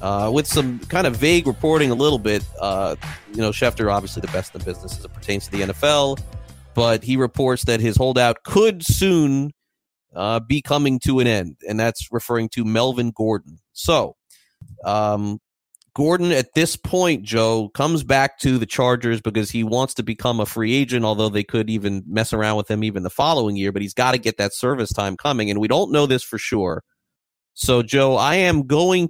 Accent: American